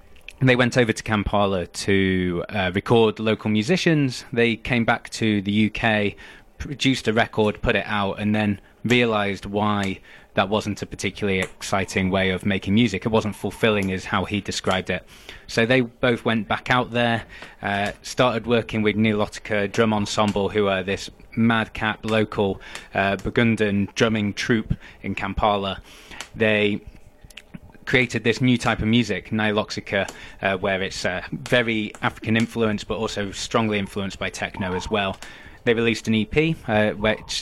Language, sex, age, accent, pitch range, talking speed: English, male, 20-39, British, 100-115 Hz, 155 wpm